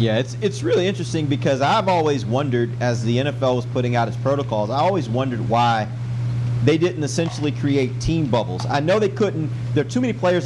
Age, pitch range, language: 40-59, 120-150 Hz, English